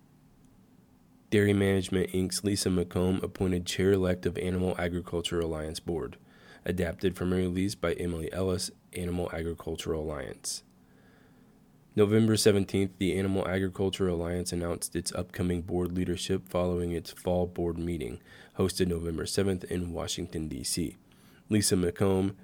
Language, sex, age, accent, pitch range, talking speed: English, male, 20-39, American, 85-95 Hz, 125 wpm